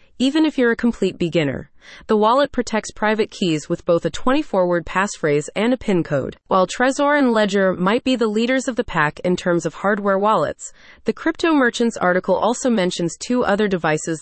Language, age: English, 30-49